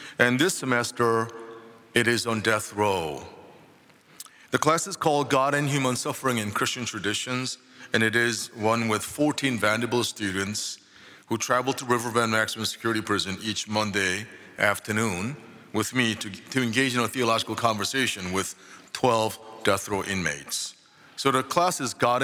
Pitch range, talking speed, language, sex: 100-125 Hz, 155 wpm, English, male